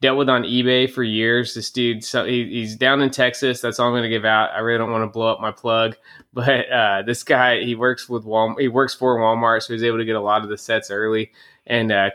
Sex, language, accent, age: male, English, American, 20-39